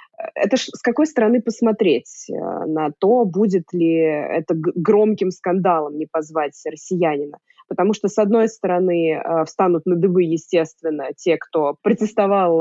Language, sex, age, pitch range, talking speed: Russian, female, 20-39, 165-210 Hz, 140 wpm